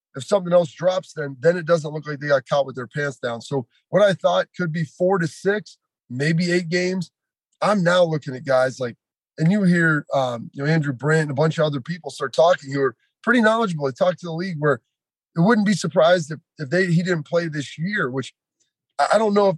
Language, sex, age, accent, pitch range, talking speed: English, male, 30-49, American, 150-185 Hz, 240 wpm